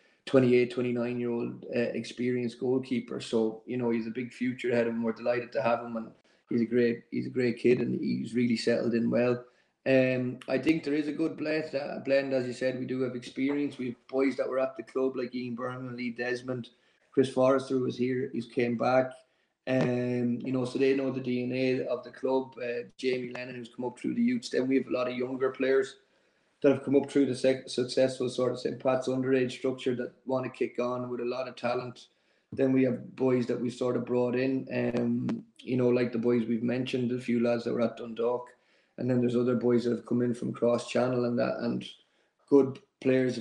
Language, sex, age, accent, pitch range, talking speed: English, male, 20-39, Irish, 120-130 Hz, 235 wpm